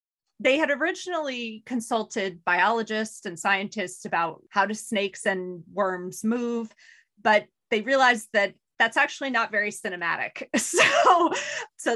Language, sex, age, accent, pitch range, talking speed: English, female, 30-49, American, 185-230 Hz, 125 wpm